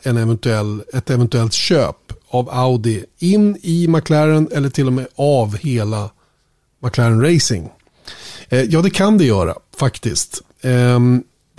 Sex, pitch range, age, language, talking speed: male, 120-140 Hz, 30-49, Swedish, 135 wpm